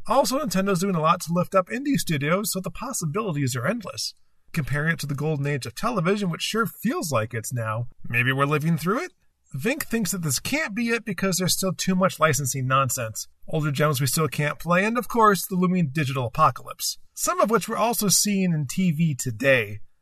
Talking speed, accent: 210 wpm, American